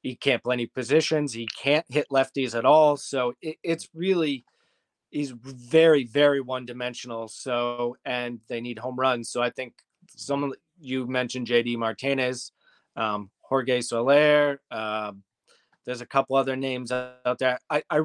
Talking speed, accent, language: 160 wpm, American, English